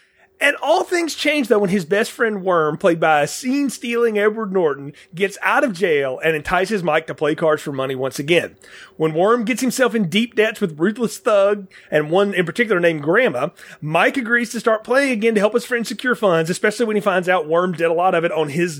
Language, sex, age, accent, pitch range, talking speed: English, male, 30-49, American, 170-235 Hz, 225 wpm